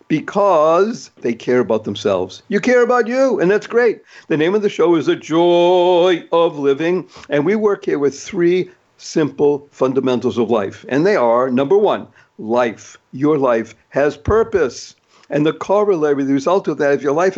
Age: 60-79